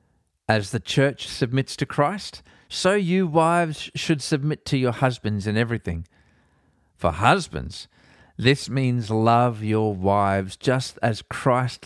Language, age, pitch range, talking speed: English, 40-59, 105-135 Hz, 130 wpm